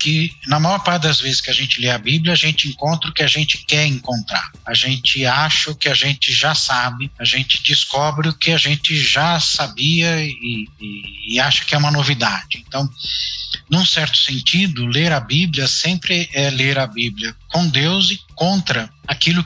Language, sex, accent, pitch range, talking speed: Portuguese, male, Brazilian, 125-160 Hz, 195 wpm